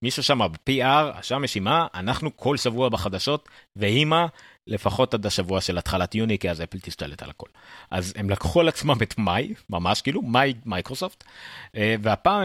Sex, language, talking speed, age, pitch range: male, Hebrew, 160 wpm, 30-49, 95-125 Hz